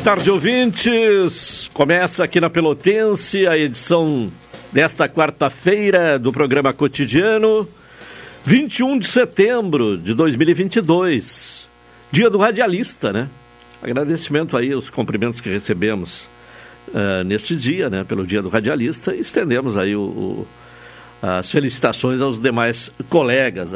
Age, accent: 60-79, Brazilian